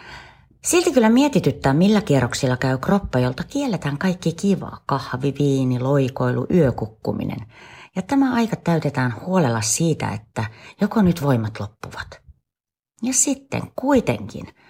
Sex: female